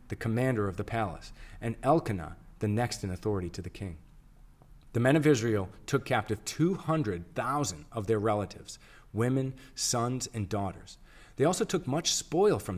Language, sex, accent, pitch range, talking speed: English, male, American, 105-145 Hz, 160 wpm